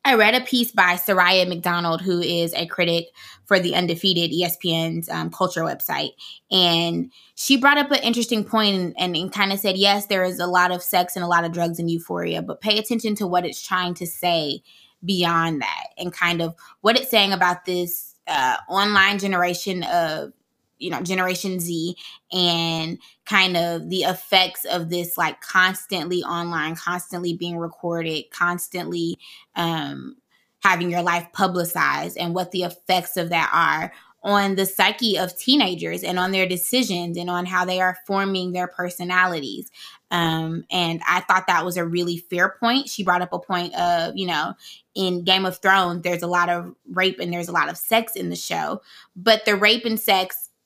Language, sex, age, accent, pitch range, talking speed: English, female, 20-39, American, 170-195 Hz, 185 wpm